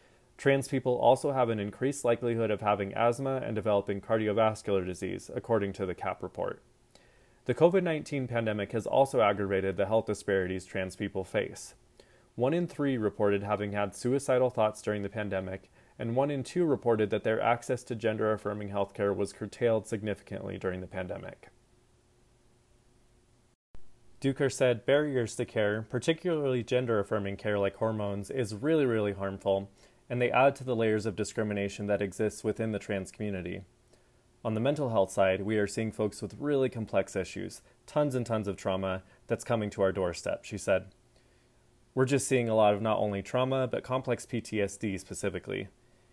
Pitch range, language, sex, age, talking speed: 100-120 Hz, English, male, 20-39, 165 wpm